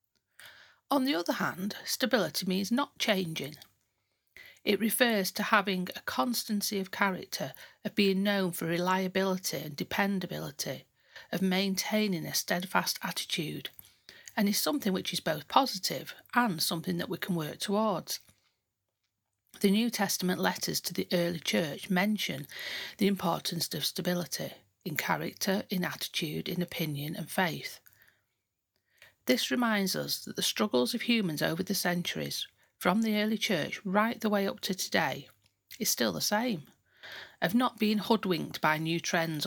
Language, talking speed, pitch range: English, 145 wpm, 160-210 Hz